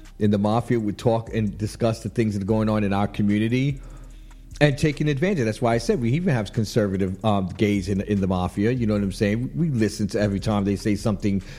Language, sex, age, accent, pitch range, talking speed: English, male, 50-69, American, 105-145 Hz, 245 wpm